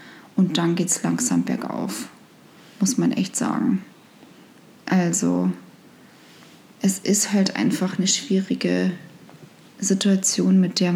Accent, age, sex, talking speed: German, 20-39, female, 110 wpm